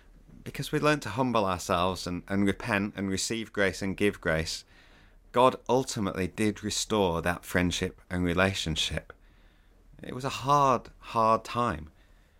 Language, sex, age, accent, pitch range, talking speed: English, male, 30-49, British, 95-150 Hz, 140 wpm